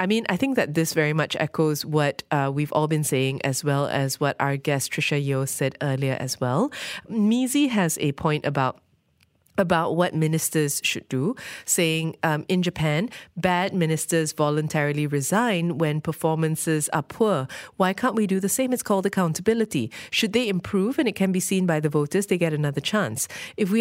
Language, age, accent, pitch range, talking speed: English, 20-39, Malaysian, 150-190 Hz, 190 wpm